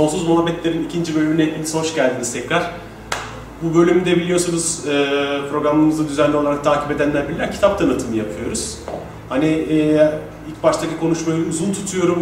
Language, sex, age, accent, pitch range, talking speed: Turkish, male, 30-49, native, 150-185 Hz, 135 wpm